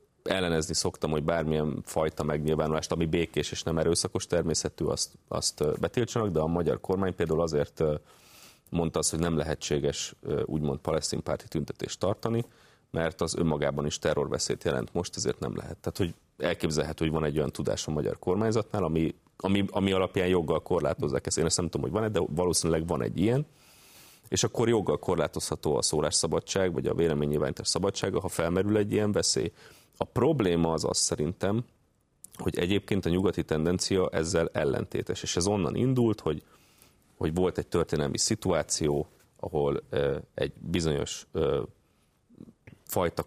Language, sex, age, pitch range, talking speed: Hungarian, male, 30-49, 80-105 Hz, 155 wpm